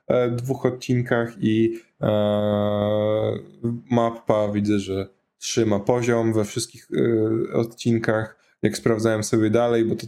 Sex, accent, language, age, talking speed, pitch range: male, native, Polish, 10-29, 115 wpm, 110-135 Hz